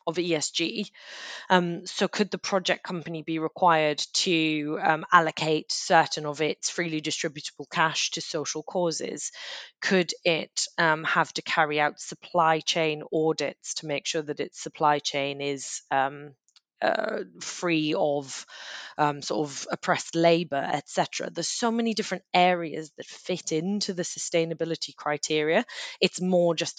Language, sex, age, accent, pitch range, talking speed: English, female, 20-39, British, 150-170 Hz, 140 wpm